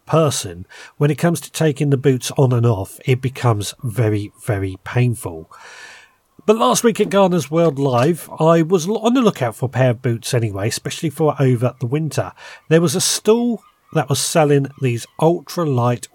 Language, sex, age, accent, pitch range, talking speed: English, male, 30-49, British, 115-155 Hz, 180 wpm